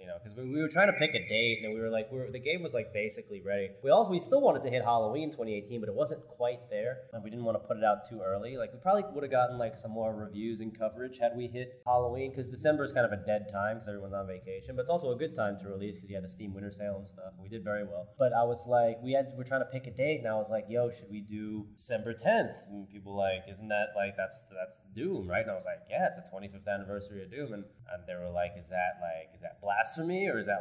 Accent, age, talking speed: American, 20-39, 310 wpm